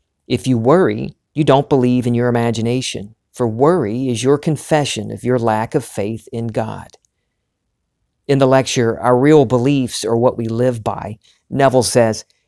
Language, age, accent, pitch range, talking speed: English, 50-69, American, 110-130 Hz, 165 wpm